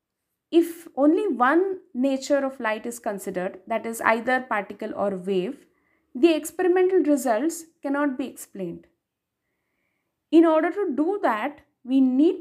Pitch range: 240-315 Hz